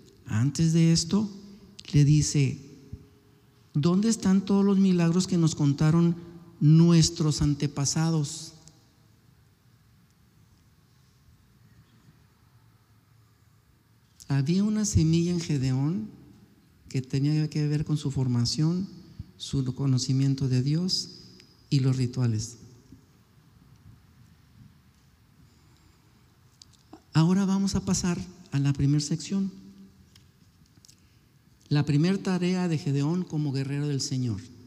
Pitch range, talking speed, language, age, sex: 120-165 Hz, 90 wpm, Spanish, 50-69, male